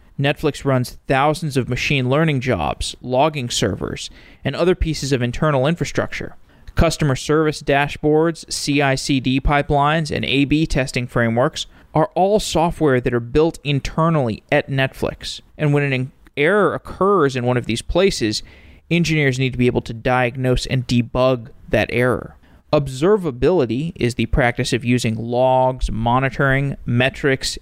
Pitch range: 120-145 Hz